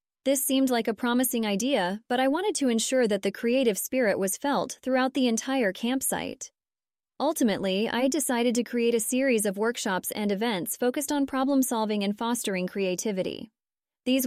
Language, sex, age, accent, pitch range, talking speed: English, female, 20-39, American, 205-255 Hz, 165 wpm